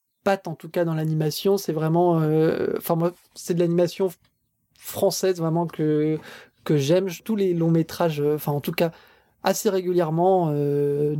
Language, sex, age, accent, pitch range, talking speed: French, male, 20-39, French, 155-190 Hz, 160 wpm